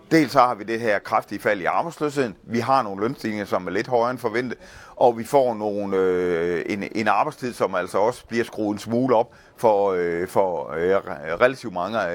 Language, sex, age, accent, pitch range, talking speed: Danish, male, 30-49, native, 95-120 Hz, 180 wpm